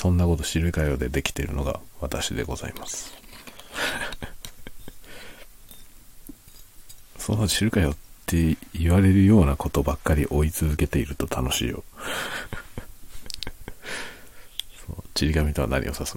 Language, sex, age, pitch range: Japanese, male, 40-59, 75-95 Hz